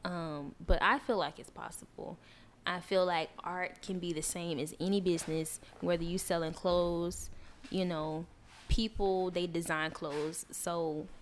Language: English